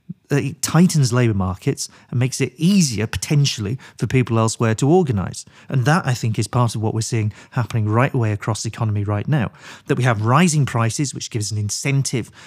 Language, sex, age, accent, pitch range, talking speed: English, male, 40-59, British, 110-150 Hz, 195 wpm